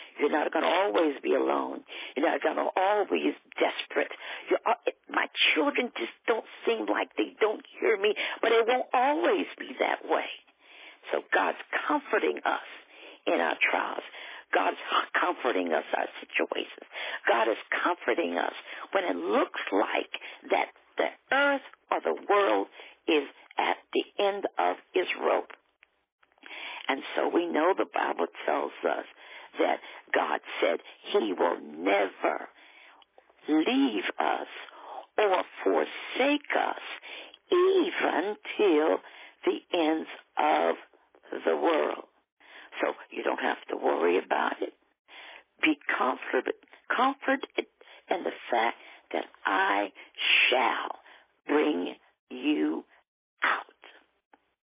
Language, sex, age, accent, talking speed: English, female, 50-69, American, 120 wpm